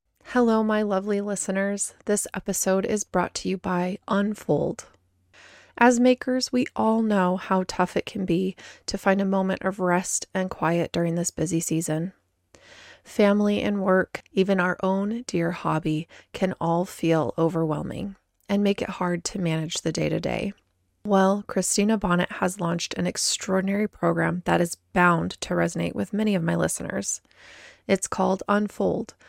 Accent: American